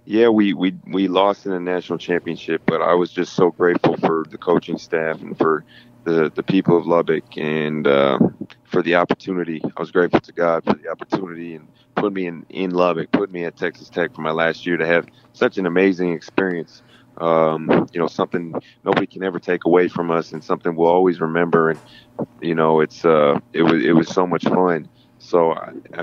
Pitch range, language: 85-95 Hz, English